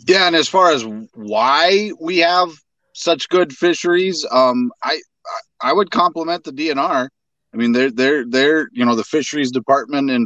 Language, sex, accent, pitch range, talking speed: English, male, American, 120-155 Hz, 175 wpm